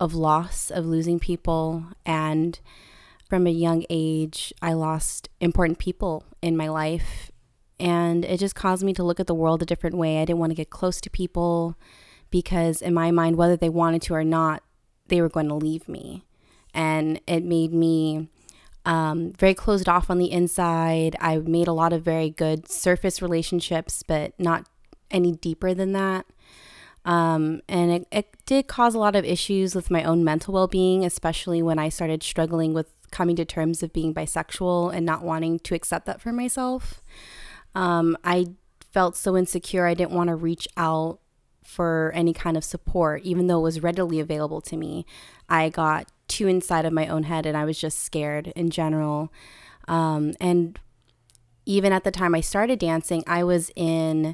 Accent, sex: American, female